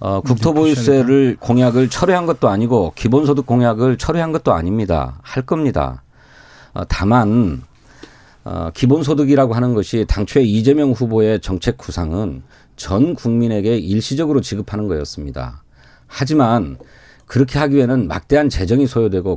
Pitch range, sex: 95-135 Hz, male